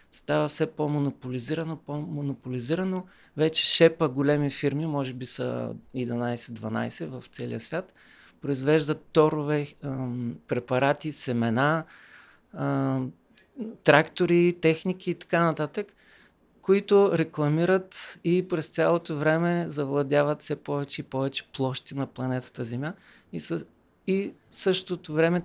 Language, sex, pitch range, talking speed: Bulgarian, male, 135-165 Hz, 110 wpm